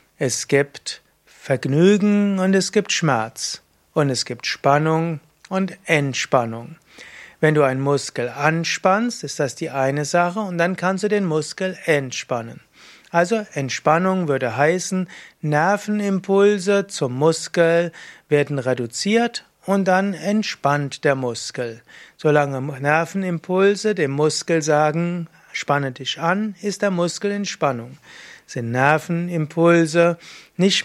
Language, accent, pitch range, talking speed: German, German, 145-190 Hz, 115 wpm